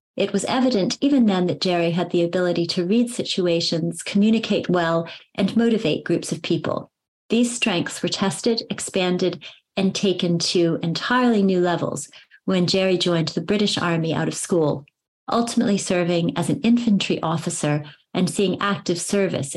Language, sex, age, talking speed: English, female, 30-49, 155 wpm